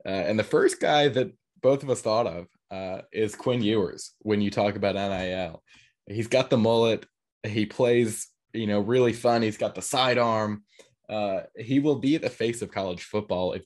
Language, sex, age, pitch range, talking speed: English, male, 20-39, 100-115 Hz, 195 wpm